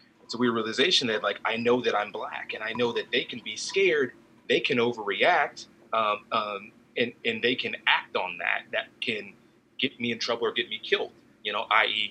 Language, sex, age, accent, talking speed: English, male, 30-49, American, 215 wpm